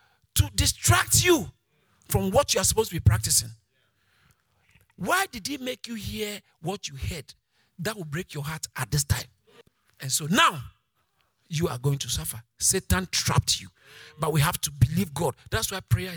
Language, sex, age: English, male, 50-69